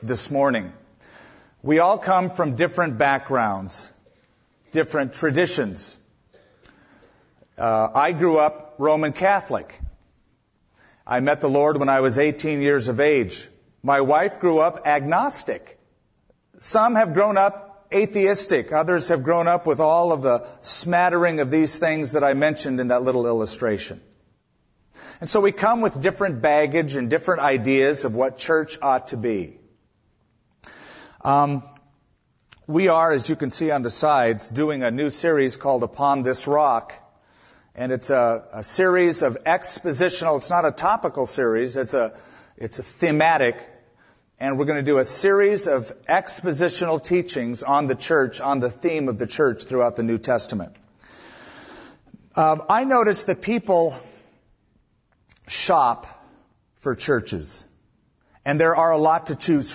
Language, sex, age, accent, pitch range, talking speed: English, male, 50-69, American, 130-175 Hz, 145 wpm